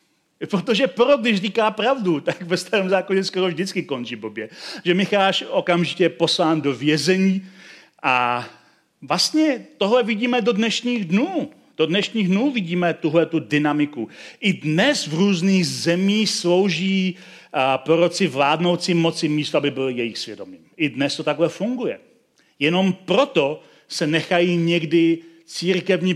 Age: 40-59